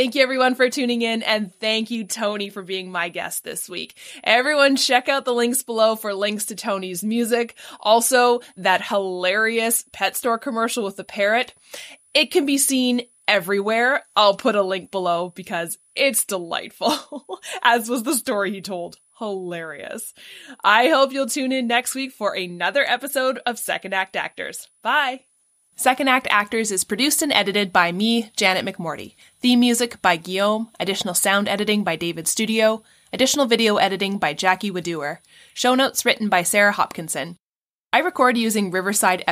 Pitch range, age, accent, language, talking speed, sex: 190-245 Hz, 20-39, American, English, 165 wpm, female